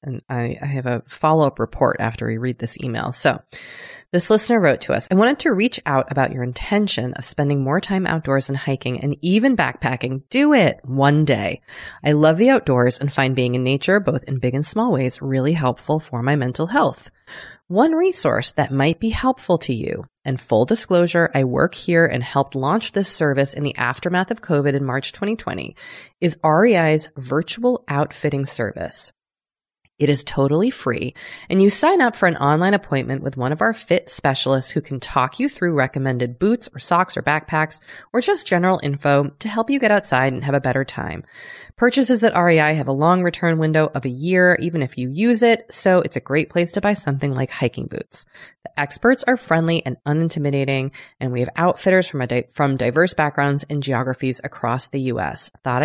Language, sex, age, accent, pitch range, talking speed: English, female, 30-49, American, 135-185 Hz, 200 wpm